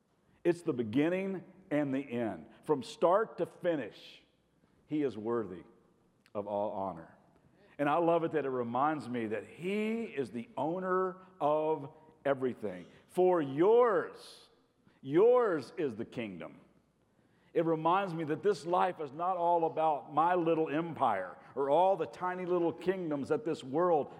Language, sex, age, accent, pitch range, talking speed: English, male, 50-69, American, 135-190 Hz, 145 wpm